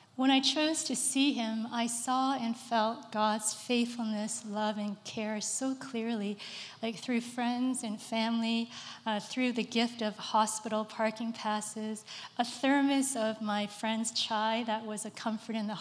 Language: English